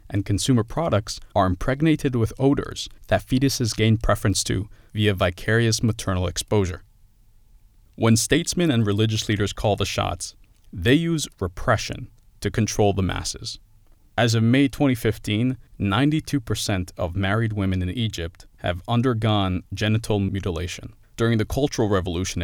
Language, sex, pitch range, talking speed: English, male, 95-115 Hz, 135 wpm